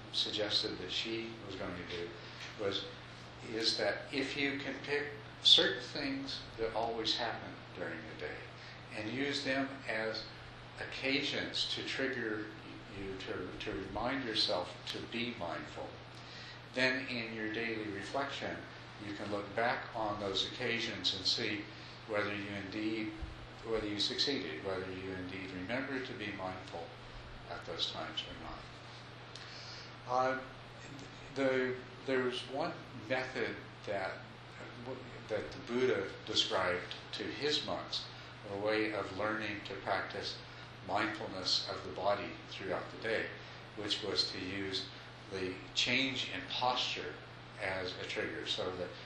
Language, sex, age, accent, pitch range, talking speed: English, male, 60-79, American, 100-125 Hz, 130 wpm